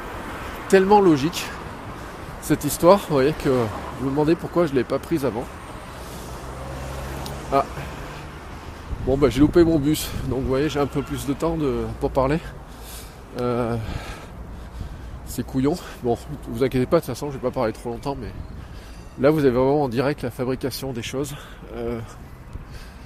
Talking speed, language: 165 wpm, French